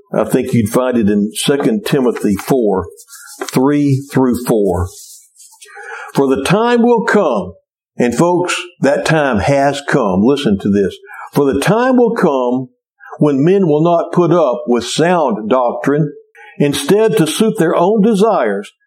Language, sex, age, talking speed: English, male, 60-79, 145 wpm